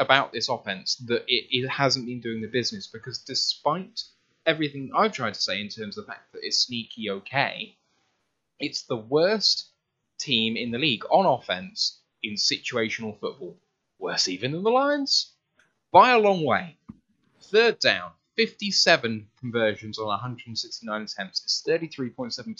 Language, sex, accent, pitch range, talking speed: English, male, British, 120-200 Hz, 145 wpm